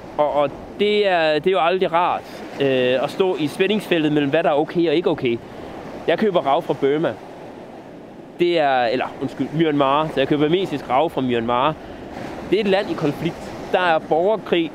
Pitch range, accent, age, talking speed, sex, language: 150-210 Hz, native, 30-49, 190 wpm, male, Danish